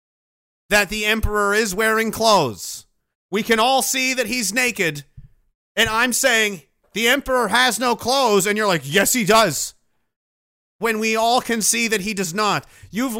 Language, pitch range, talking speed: English, 200-265 Hz, 170 wpm